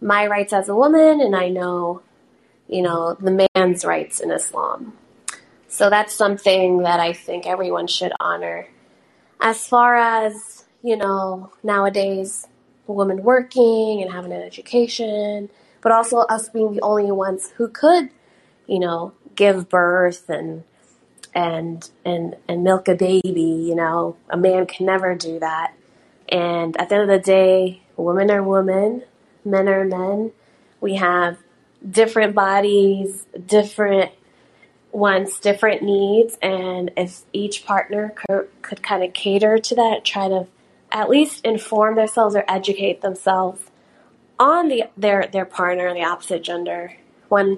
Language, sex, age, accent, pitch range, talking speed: English, female, 20-39, American, 180-210 Hz, 145 wpm